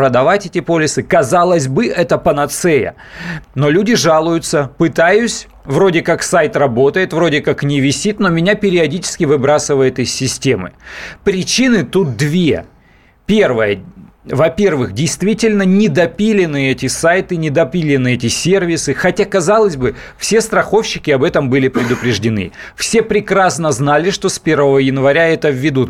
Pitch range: 140-180 Hz